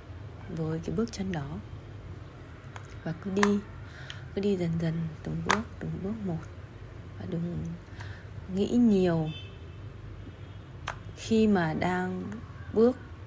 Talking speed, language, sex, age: 115 wpm, Vietnamese, female, 20-39